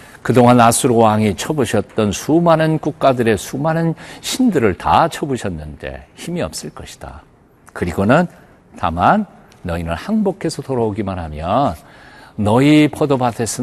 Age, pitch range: 60-79, 95-155 Hz